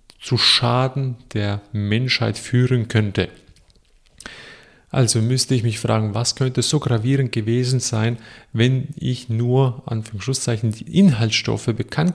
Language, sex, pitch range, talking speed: German, male, 115-140 Hz, 115 wpm